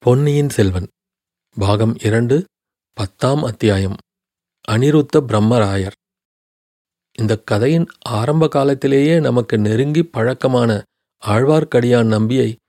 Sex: male